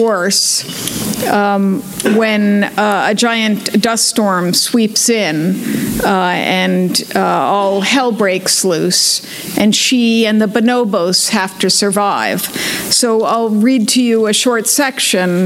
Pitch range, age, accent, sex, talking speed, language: 205-245 Hz, 50-69, American, female, 125 wpm, English